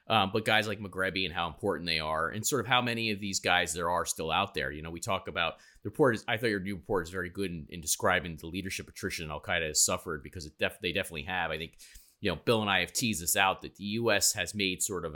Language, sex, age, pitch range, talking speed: English, male, 30-49, 85-110 Hz, 290 wpm